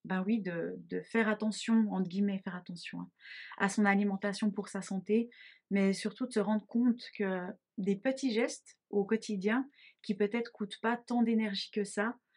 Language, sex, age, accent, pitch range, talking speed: French, female, 20-39, French, 185-220 Hz, 185 wpm